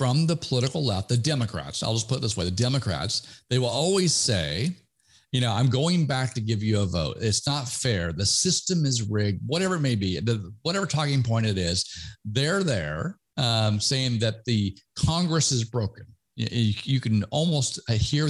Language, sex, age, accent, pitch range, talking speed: English, male, 50-69, American, 105-135 Hz, 190 wpm